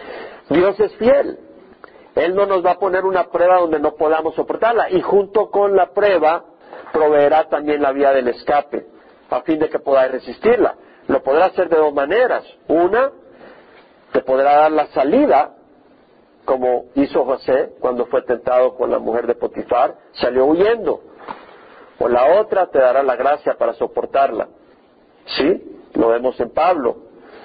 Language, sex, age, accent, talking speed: Spanish, male, 50-69, Mexican, 155 wpm